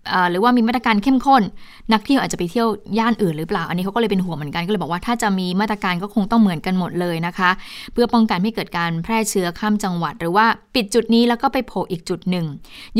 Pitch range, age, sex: 180-225 Hz, 20-39, female